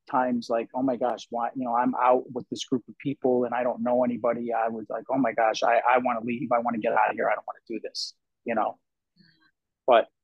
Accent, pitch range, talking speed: American, 115-130 Hz, 275 wpm